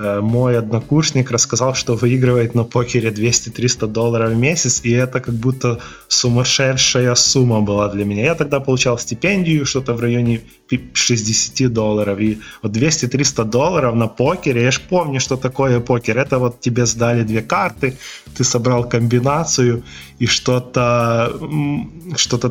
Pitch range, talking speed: 115-130 Hz, 140 wpm